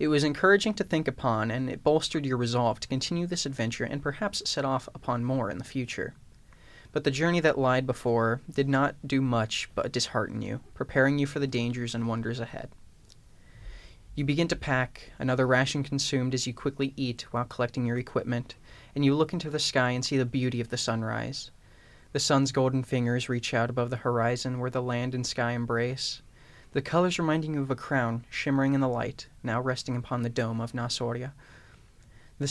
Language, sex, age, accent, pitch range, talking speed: English, male, 20-39, American, 120-140 Hz, 200 wpm